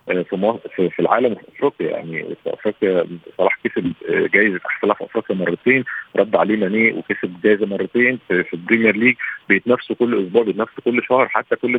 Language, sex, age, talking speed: Arabic, male, 50-69, 160 wpm